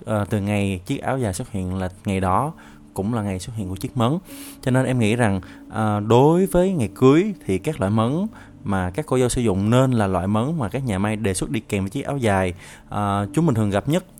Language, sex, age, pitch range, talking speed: Vietnamese, male, 20-39, 100-135 Hz, 245 wpm